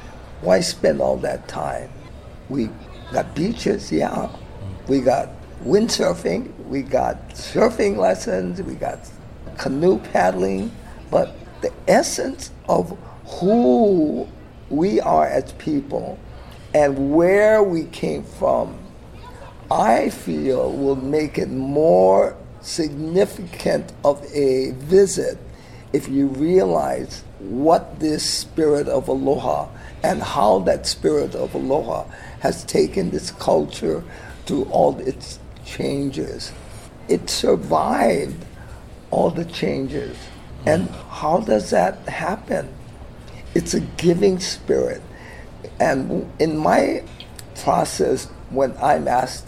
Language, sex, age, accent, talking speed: English, male, 50-69, American, 105 wpm